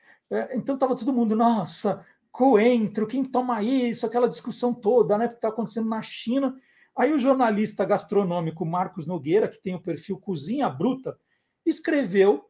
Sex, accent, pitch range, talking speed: male, Brazilian, 185-255 Hz, 155 wpm